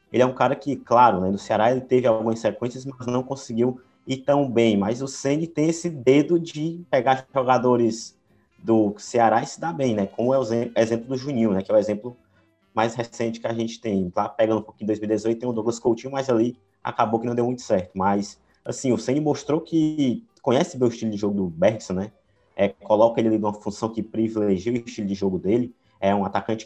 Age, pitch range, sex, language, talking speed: 20-39, 110-130 Hz, male, Portuguese, 225 wpm